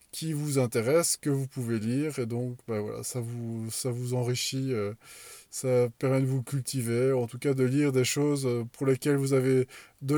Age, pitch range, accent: 20-39, 120-140 Hz, French